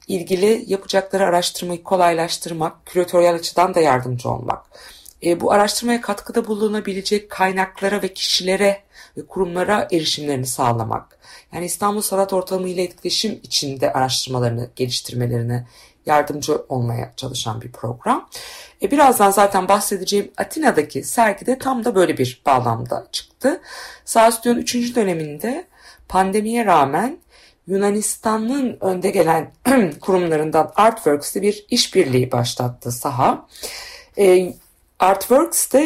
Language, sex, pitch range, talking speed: Turkish, female, 145-210 Hz, 105 wpm